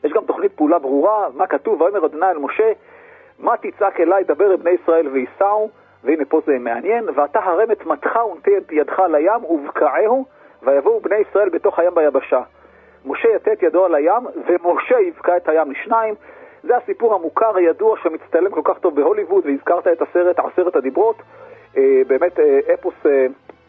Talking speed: 160 wpm